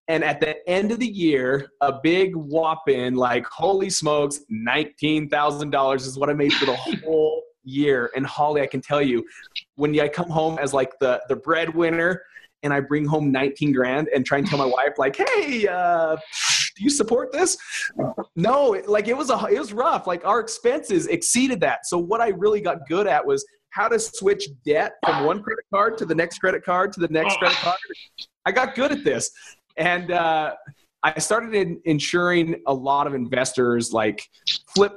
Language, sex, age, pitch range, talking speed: English, male, 30-49, 145-205 Hz, 190 wpm